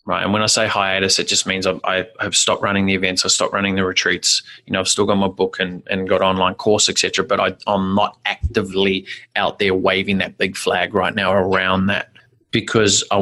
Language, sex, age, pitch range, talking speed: English, male, 20-39, 95-105 Hz, 225 wpm